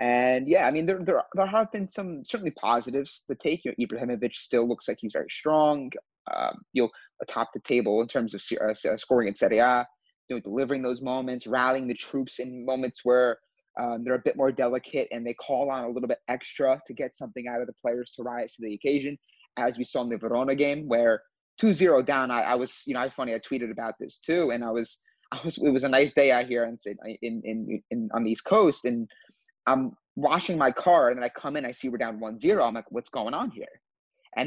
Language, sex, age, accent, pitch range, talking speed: English, male, 30-49, American, 115-140 Hz, 240 wpm